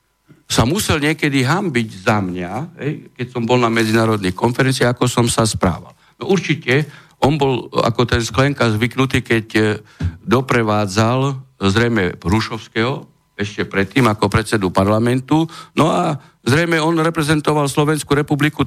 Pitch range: 105-145 Hz